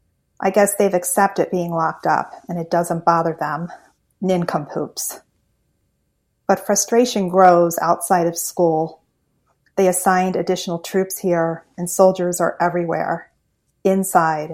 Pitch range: 170-185 Hz